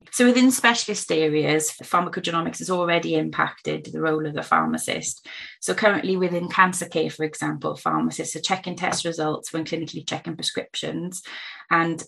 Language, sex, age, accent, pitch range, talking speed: English, female, 20-39, British, 160-180 Hz, 150 wpm